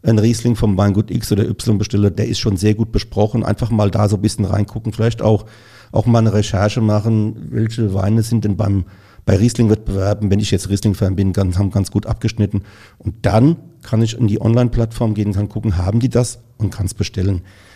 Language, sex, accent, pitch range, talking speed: German, male, German, 105-120 Hz, 215 wpm